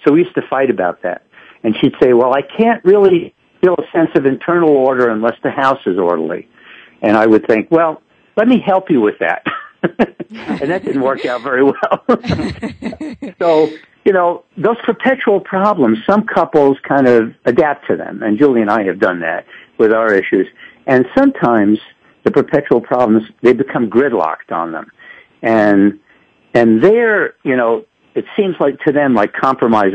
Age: 60-79